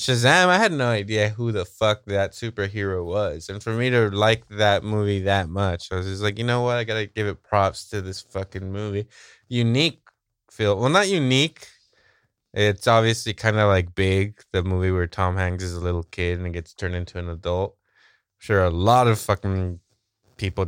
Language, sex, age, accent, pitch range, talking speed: English, male, 20-39, American, 95-125 Hz, 205 wpm